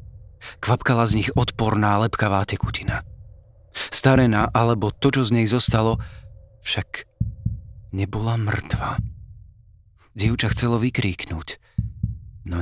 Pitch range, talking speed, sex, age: 85-115 Hz, 95 wpm, male, 40-59